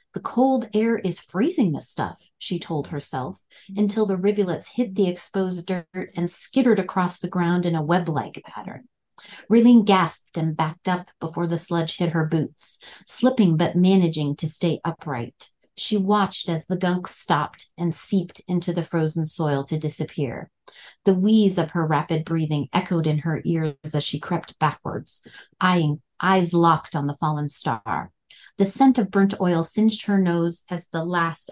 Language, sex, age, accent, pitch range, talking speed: English, female, 30-49, American, 160-200 Hz, 170 wpm